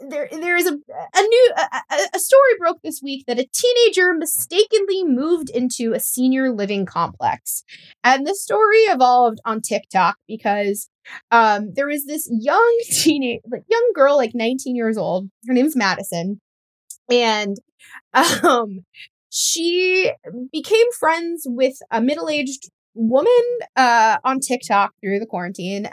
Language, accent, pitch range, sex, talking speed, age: English, American, 210-290 Hz, female, 145 wpm, 20-39